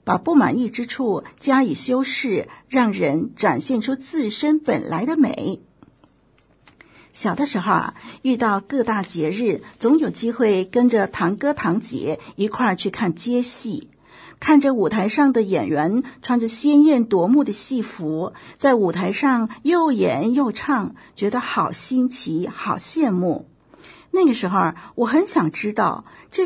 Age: 50-69